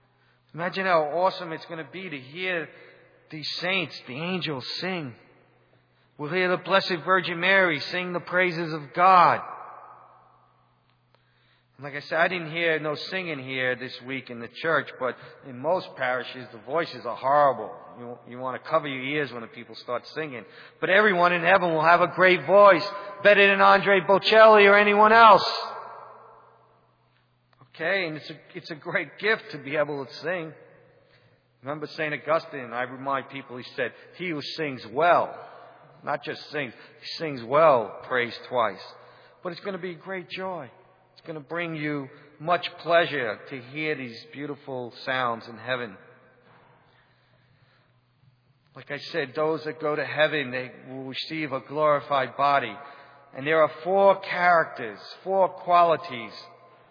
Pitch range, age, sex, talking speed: 130-180 Hz, 40-59, male, 160 wpm